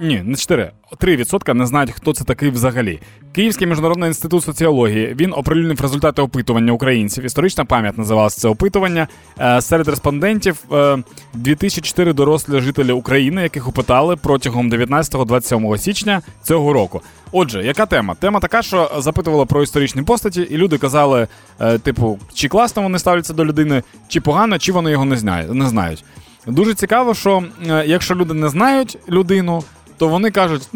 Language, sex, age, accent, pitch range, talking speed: Ukrainian, male, 20-39, native, 120-175 Hz, 150 wpm